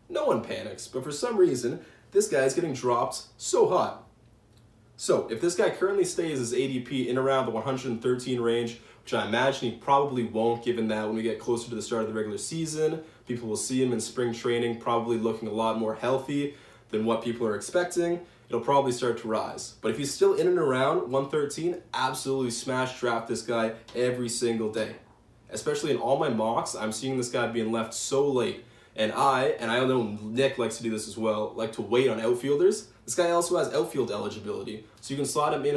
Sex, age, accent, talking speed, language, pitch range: male, 20-39, American, 215 wpm, English, 115-135 Hz